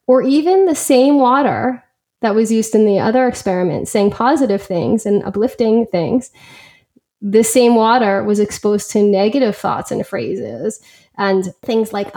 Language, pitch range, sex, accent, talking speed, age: English, 200-235 Hz, female, American, 155 wpm, 10-29